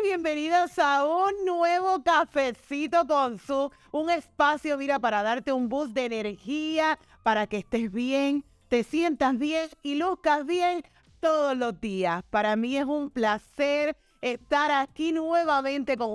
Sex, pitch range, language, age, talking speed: female, 220-305 Hz, Spanish, 30-49, 140 wpm